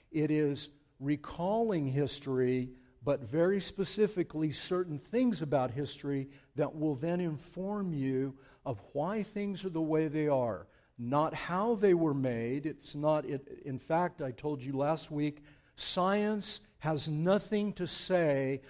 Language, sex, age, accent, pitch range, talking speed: English, male, 60-79, American, 135-180 Hz, 140 wpm